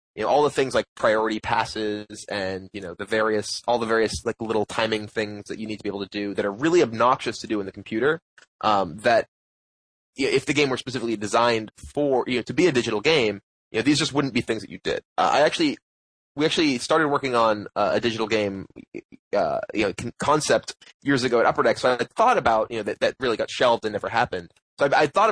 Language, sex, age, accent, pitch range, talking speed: English, male, 20-39, American, 100-120 Hz, 245 wpm